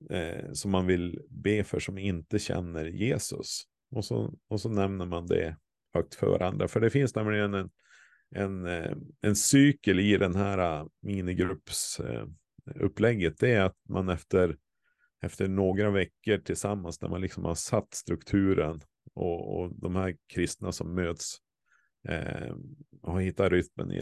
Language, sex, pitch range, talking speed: Swedish, male, 90-105 Hz, 155 wpm